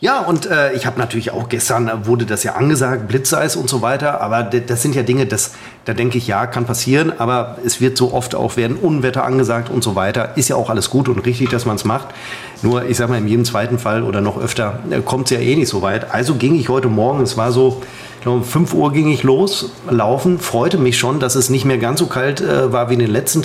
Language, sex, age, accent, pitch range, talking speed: German, male, 40-59, German, 120-135 Hz, 265 wpm